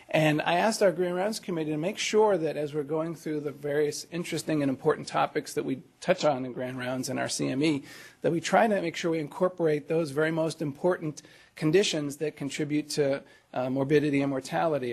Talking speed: 205 wpm